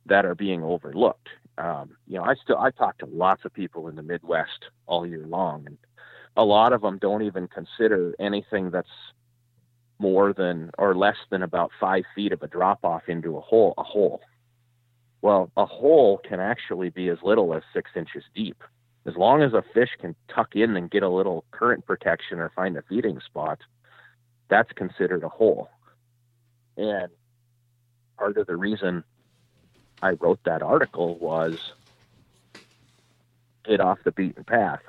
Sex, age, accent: male, 30-49, American